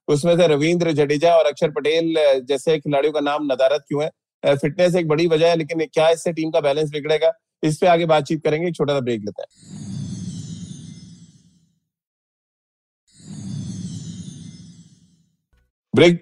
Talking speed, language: 135 wpm, Hindi